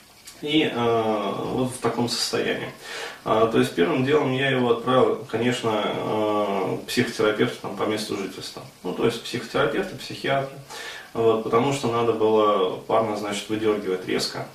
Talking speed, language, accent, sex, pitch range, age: 145 wpm, Russian, native, male, 105-125 Hz, 20-39